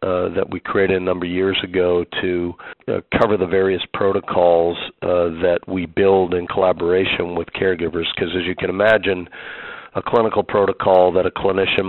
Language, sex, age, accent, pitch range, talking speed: English, male, 50-69, American, 85-95 Hz, 170 wpm